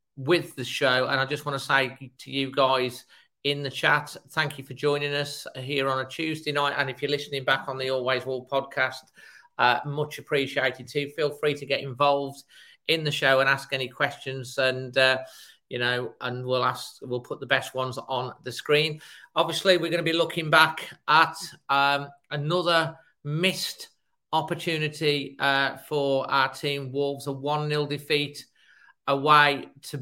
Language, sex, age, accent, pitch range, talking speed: English, male, 40-59, British, 130-145 Hz, 180 wpm